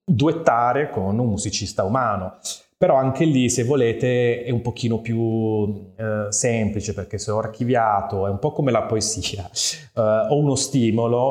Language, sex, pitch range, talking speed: Italian, male, 100-125 Hz, 160 wpm